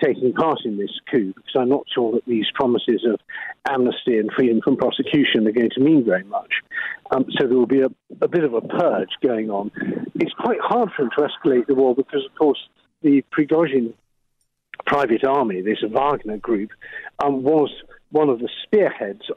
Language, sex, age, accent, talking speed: English, male, 50-69, British, 190 wpm